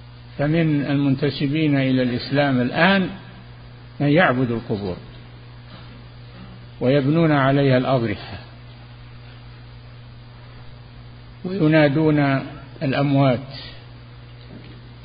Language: Arabic